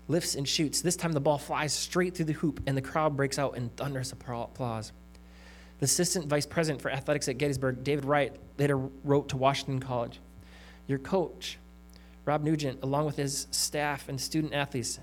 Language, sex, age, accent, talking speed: English, male, 20-39, American, 185 wpm